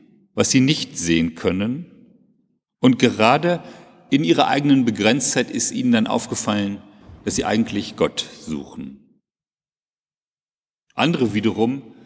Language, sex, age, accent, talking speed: German, male, 40-59, German, 110 wpm